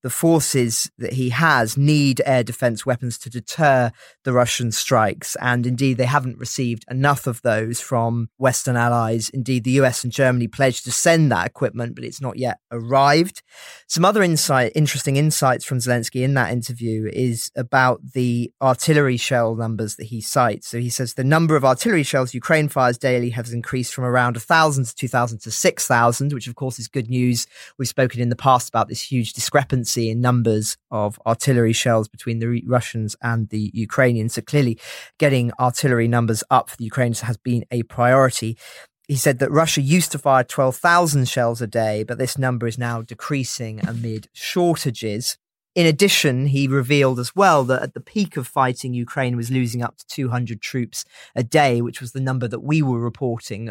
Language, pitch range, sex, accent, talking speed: English, 115-135 Hz, male, British, 185 wpm